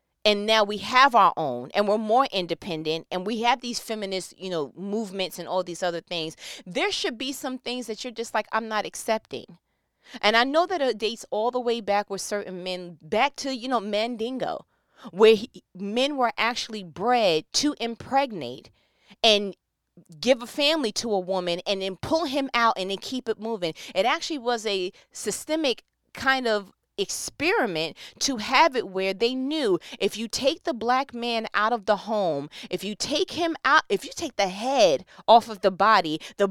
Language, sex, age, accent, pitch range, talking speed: English, female, 30-49, American, 185-260 Hz, 190 wpm